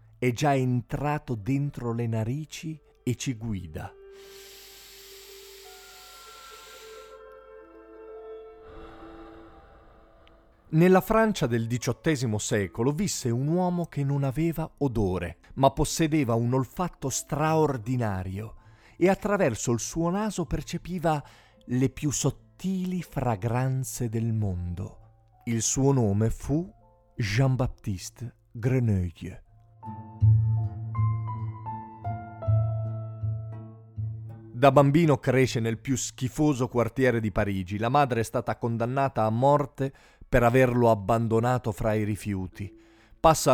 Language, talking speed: Italian, 90 wpm